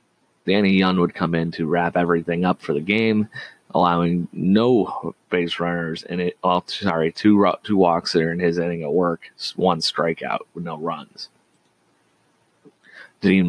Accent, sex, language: American, male, English